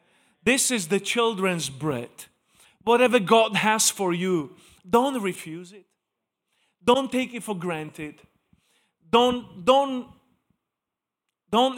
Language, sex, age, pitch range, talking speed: English, male, 40-59, 155-210 Hz, 105 wpm